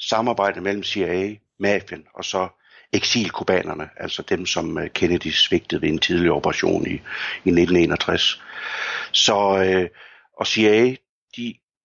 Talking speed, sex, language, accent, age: 125 wpm, male, Danish, native, 60-79